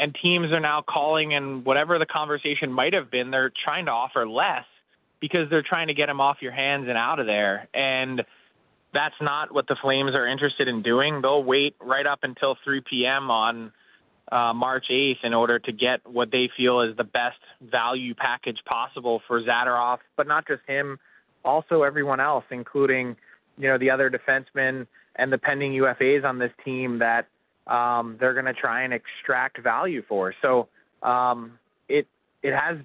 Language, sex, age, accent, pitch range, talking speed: English, male, 20-39, American, 125-150 Hz, 185 wpm